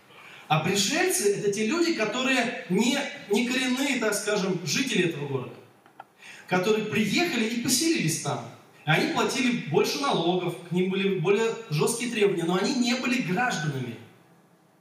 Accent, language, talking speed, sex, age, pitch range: native, Russian, 145 wpm, male, 20-39, 175-225 Hz